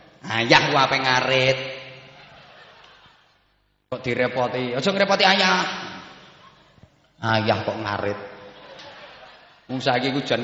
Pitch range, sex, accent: 120-150 Hz, male, native